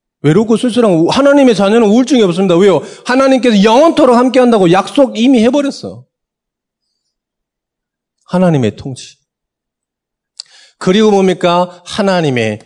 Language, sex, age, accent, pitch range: Korean, male, 40-59, native, 140-225 Hz